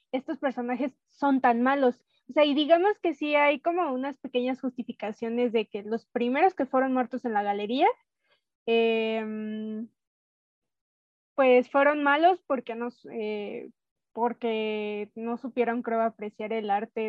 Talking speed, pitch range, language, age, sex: 140 wpm, 225-275 Hz, Spanish, 20-39, female